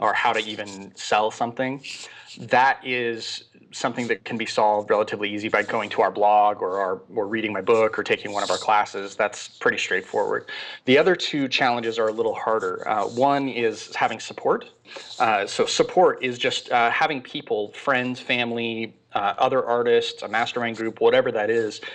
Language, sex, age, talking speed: English, male, 30-49, 185 wpm